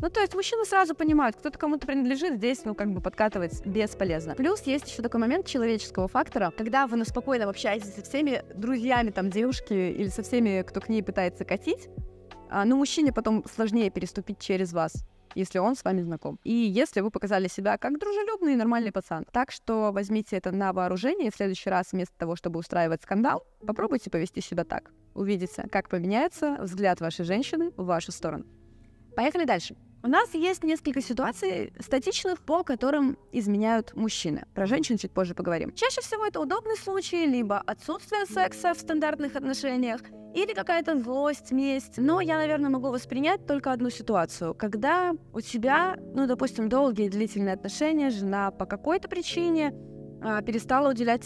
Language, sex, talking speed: Russian, female, 170 wpm